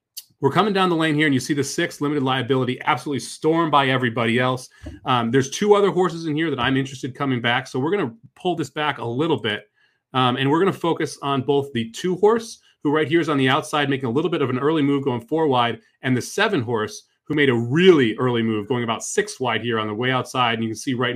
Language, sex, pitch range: English, male, 125-155 Hz